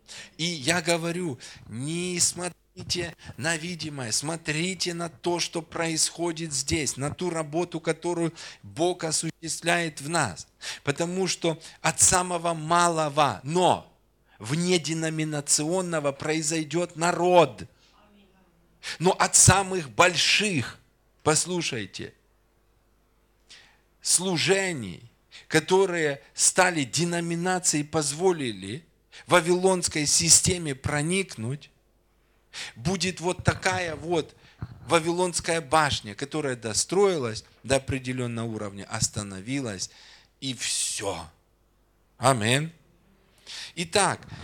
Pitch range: 120-170 Hz